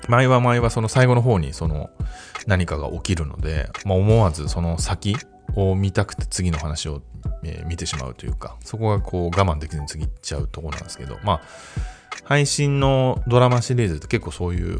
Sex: male